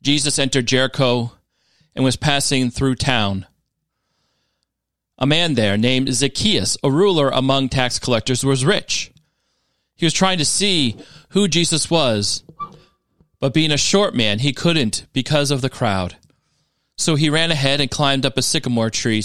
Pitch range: 120-165 Hz